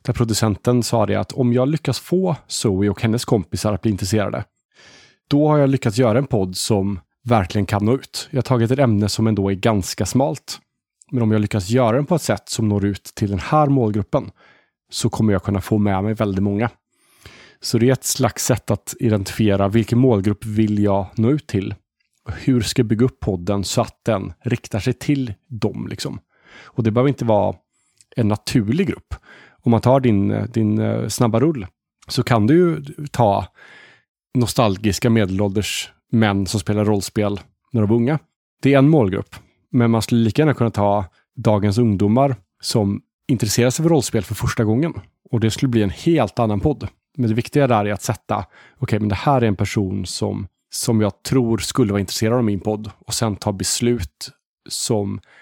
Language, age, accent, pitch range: Swedish, 30-49, Norwegian, 105-125 Hz